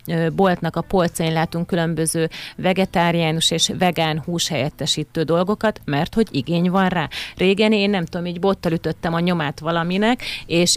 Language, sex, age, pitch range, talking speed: Hungarian, female, 30-49, 165-190 Hz, 150 wpm